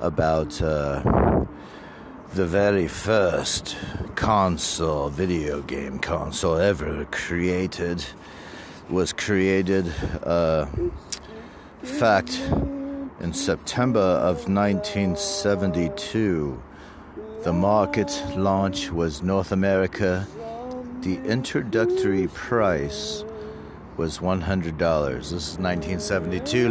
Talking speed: 70 wpm